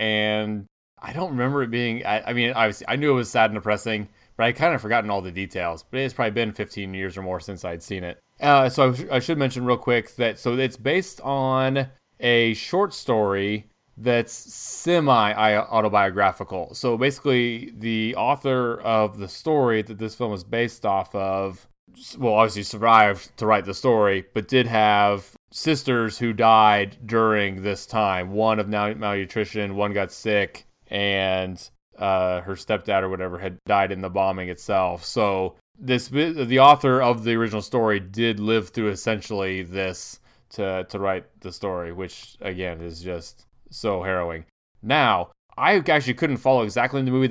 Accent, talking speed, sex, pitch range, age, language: American, 170 wpm, male, 100-125 Hz, 20-39, English